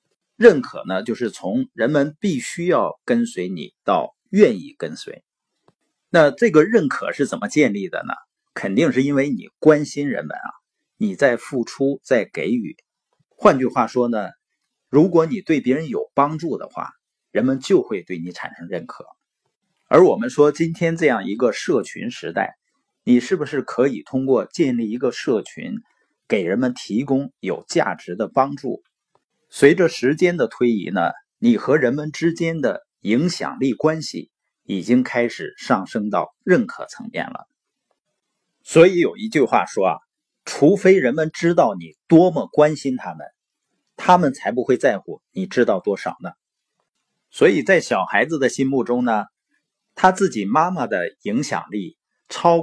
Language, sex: Chinese, male